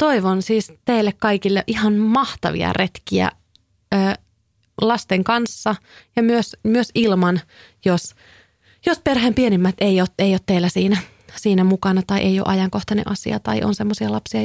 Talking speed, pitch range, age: 140 wpm, 170-205 Hz, 30-49